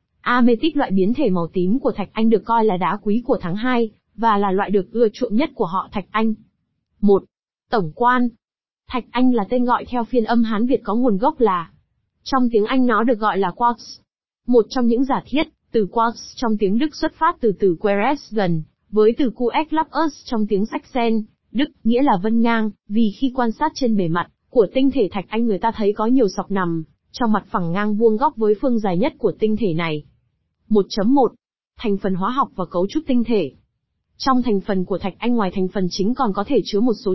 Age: 20-39